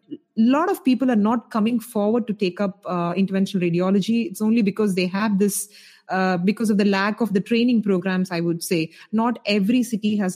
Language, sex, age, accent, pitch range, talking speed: English, female, 30-49, Indian, 180-215 Hz, 210 wpm